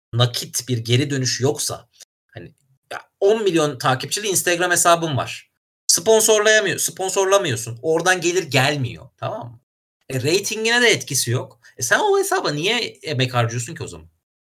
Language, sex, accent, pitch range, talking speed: Turkish, male, native, 115-170 Hz, 135 wpm